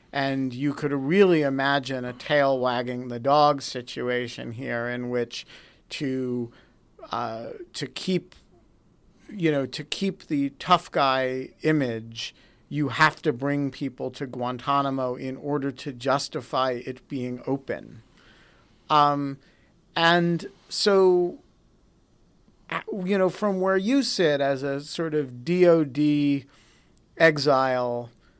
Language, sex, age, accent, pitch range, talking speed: English, male, 50-69, American, 130-165 Hz, 115 wpm